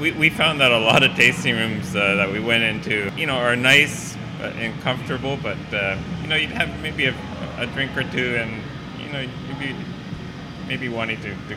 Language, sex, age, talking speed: English, male, 20-39, 205 wpm